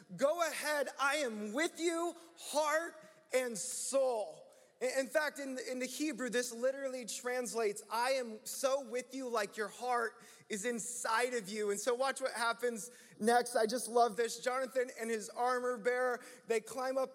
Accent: American